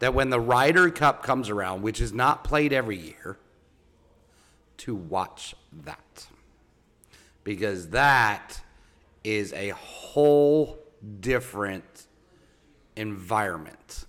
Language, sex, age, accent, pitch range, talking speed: English, male, 40-59, American, 95-120 Hz, 100 wpm